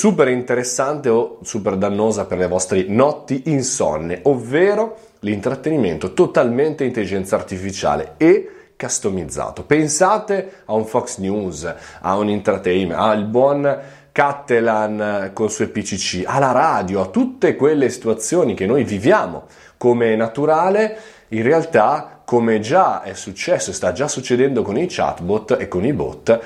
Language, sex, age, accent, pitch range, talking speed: Italian, male, 30-49, native, 110-145 Hz, 135 wpm